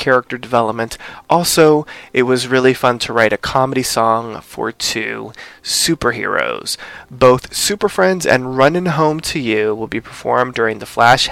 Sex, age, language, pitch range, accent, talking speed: male, 20-39, English, 115-135 Hz, American, 155 wpm